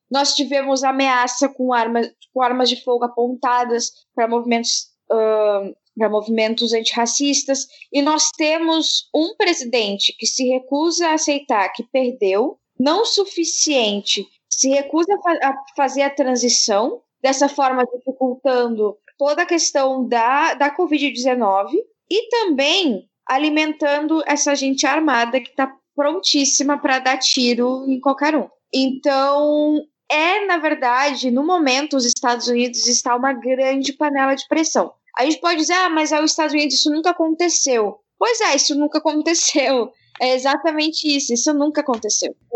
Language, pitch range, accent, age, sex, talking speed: Portuguese, 240-300 Hz, Brazilian, 10-29, female, 140 wpm